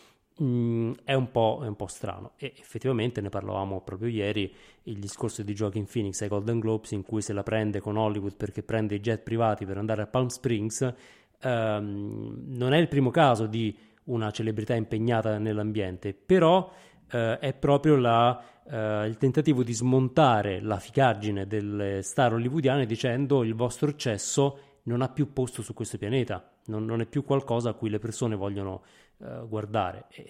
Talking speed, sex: 170 wpm, male